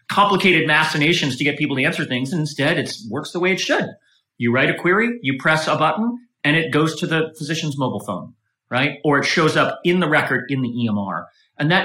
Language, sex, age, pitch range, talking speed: English, male, 30-49, 135-185 Hz, 230 wpm